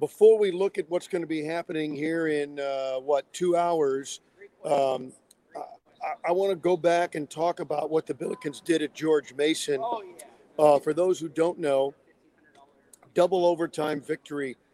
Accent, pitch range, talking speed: American, 140-165 Hz, 165 wpm